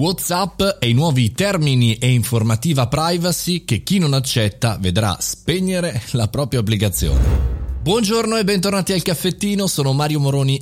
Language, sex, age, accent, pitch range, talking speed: Italian, male, 30-49, native, 110-145 Hz, 140 wpm